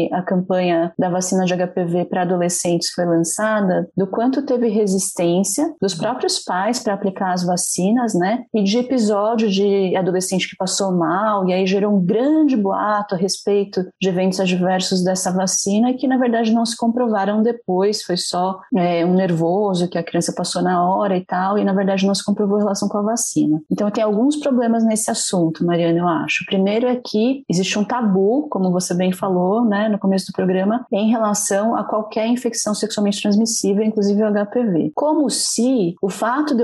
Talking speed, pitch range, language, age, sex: 185 wpm, 185-225 Hz, Portuguese, 30-49, female